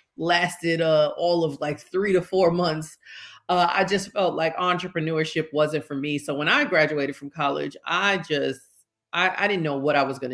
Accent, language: American, English